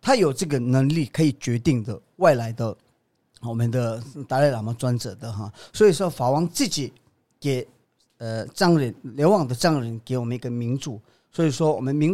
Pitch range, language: 125-175 Hz, Chinese